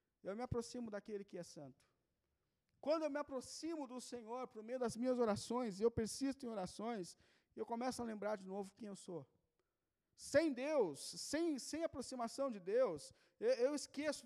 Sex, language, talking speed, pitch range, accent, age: male, Portuguese, 170 wpm, 225-285 Hz, Brazilian, 40-59